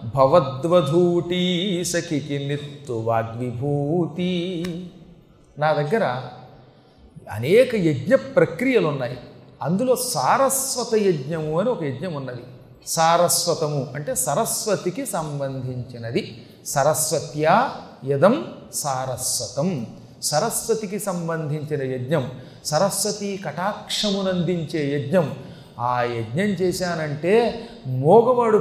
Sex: male